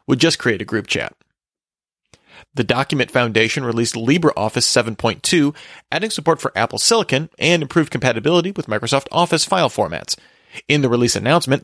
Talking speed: 150 wpm